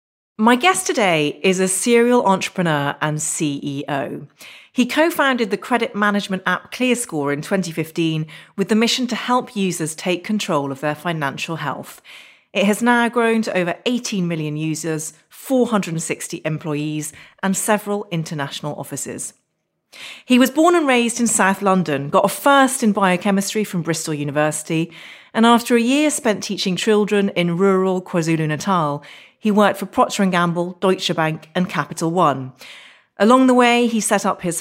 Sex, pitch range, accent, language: female, 160-230 Hz, British, English